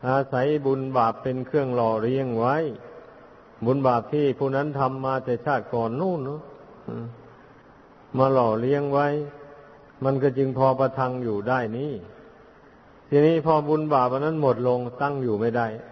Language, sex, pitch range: Thai, male, 120-145 Hz